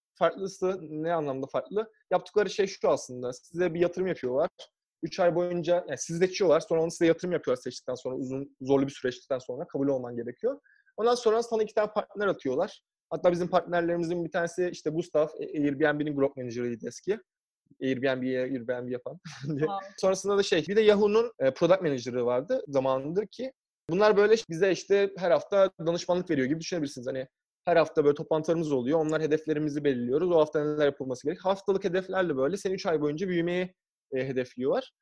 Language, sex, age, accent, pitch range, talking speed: English, male, 20-39, Turkish, 145-190 Hz, 170 wpm